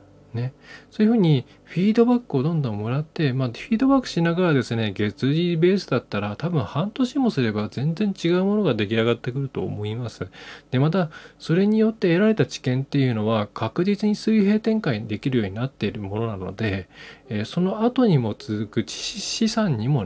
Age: 20-39